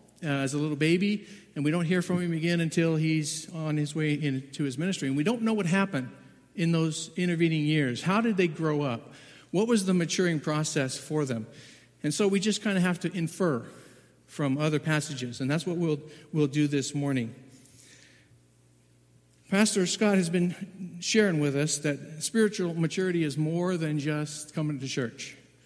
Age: 50-69